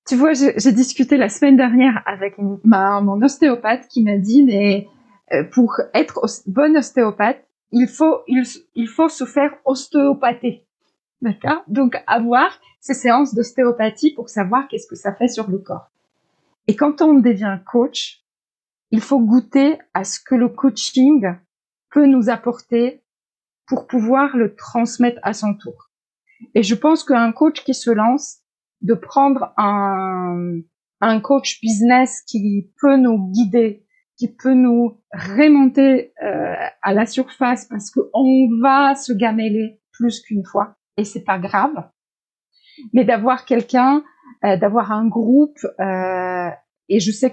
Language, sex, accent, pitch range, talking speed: French, female, French, 215-260 Hz, 145 wpm